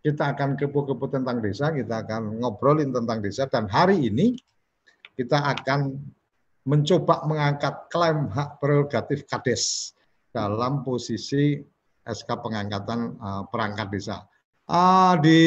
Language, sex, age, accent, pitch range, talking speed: Indonesian, male, 50-69, native, 115-155 Hz, 115 wpm